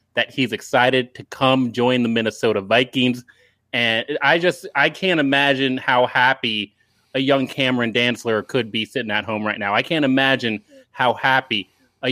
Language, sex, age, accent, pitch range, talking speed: English, male, 30-49, American, 120-140 Hz, 170 wpm